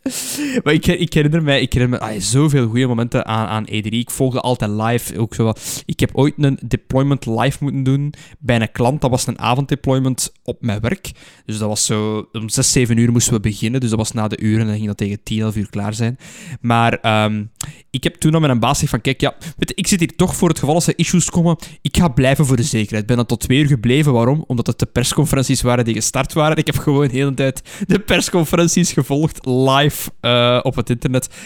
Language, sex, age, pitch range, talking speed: Dutch, male, 10-29, 115-145 Hz, 235 wpm